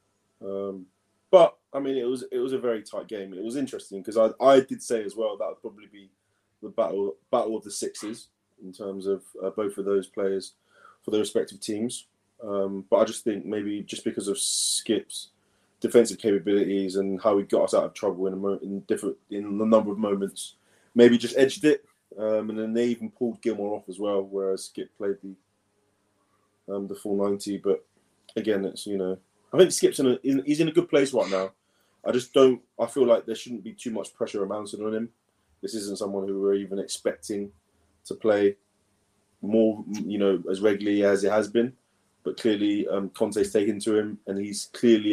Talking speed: 210 wpm